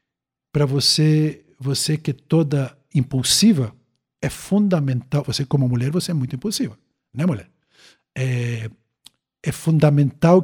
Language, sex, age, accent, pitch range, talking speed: Portuguese, male, 60-79, Brazilian, 135-170 Hz, 120 wpm